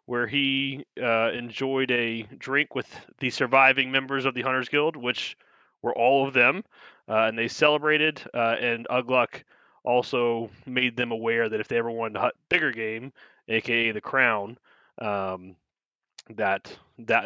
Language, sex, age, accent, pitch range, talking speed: English, male, 20-39, American, 115-135 Hz, 155 wpm